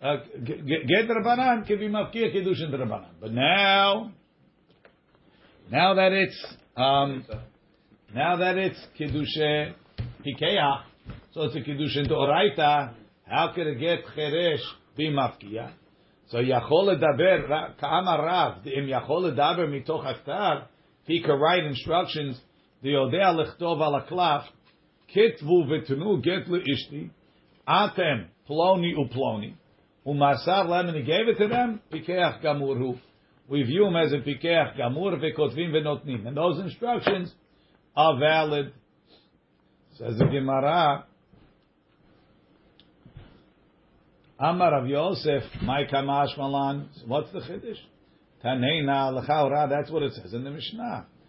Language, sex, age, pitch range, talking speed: English, male, 50-69, 135-175 Hz, 115 wpm